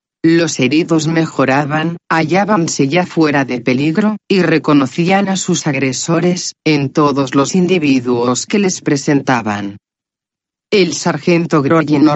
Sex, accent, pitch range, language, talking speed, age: female, Spanish, 140-175 Hz, Spanish, 120 wpm, 40-59